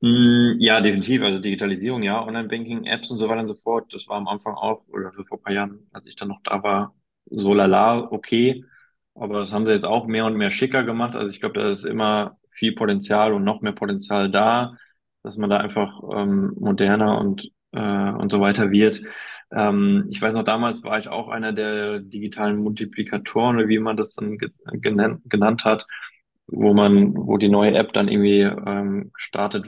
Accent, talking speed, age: German, 195 wpm, 20-39